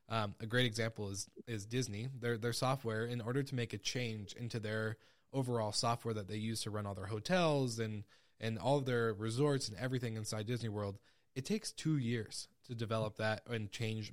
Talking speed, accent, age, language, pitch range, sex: 195 wpm, American, 20-39, English, 110-130 Hz, male